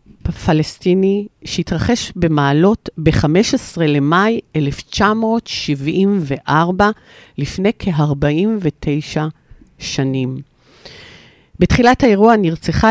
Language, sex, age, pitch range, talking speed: Hebrew, female, 50-69, 145-190 Hz, 55 wpm